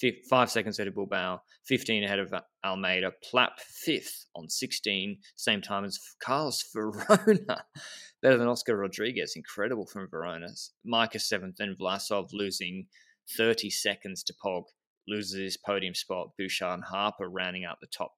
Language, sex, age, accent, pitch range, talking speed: English, male, 20-39, Australian, 95-115 Hz, 150 wpm